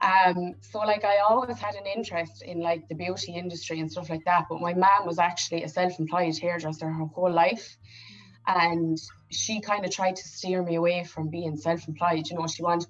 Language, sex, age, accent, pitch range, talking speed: English, female, 20-39, Irish, 160-185 Hz, 205 wpm